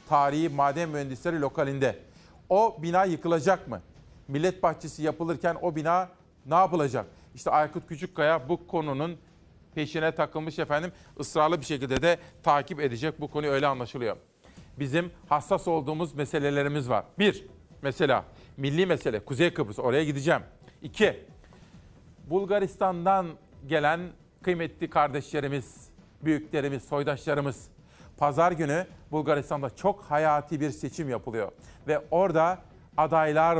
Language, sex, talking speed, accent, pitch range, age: Turkish, male, 115 wpm, native, 145-170 Hz, 40-59